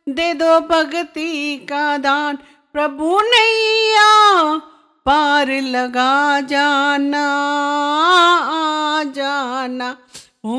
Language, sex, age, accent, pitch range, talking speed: English, female, 50-69, Indian, 290-375 Hz, 60 wpm